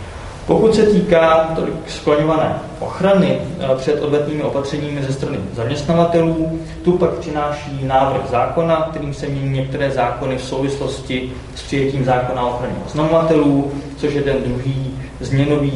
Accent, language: native, Czech